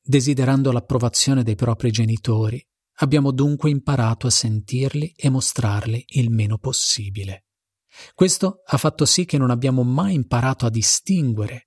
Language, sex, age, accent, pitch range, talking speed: Italian, male, 40-59, native, 115-150 Hz, 135 wpm